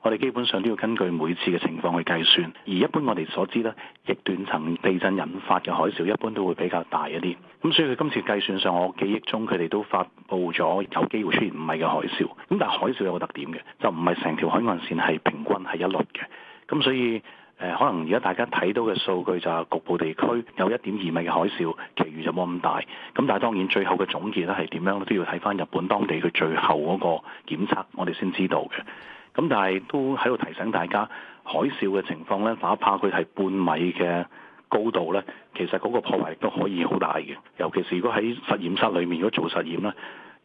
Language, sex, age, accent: Chinese, male, 40-59, native